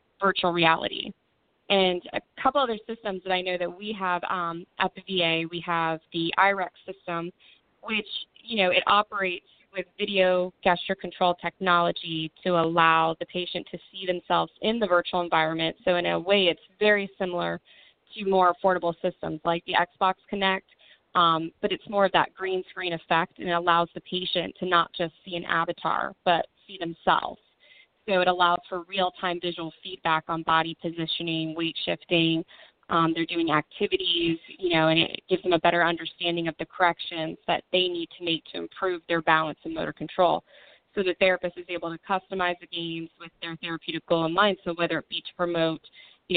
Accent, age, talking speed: American, 20-39, 185 wpm